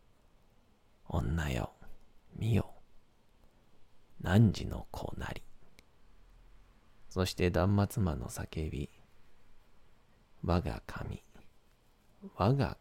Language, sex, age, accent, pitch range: Japanese, male, 40-59, native, 90-105 Hz